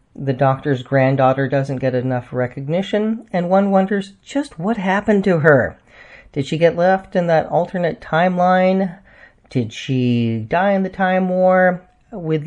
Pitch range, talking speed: 130-190 Hz, 150 wpm